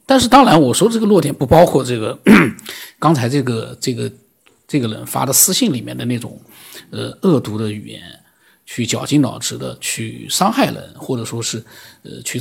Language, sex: Chinese, male